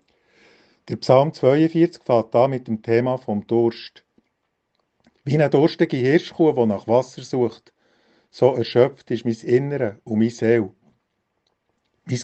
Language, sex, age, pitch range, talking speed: German, male, 50-69, 115-135 Hz, 130 wpm